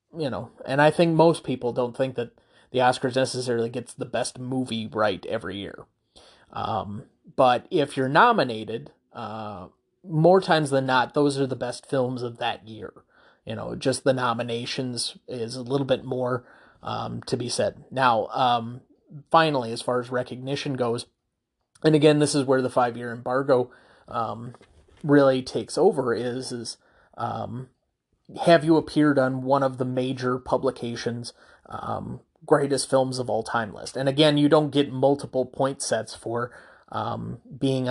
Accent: American